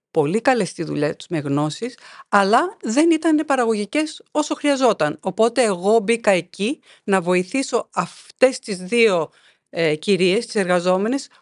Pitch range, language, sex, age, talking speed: 180-270 Hz, Greek, female, 50-69, 135 wpm